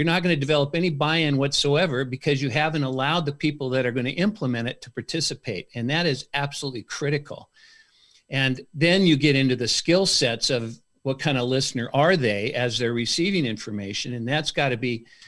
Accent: American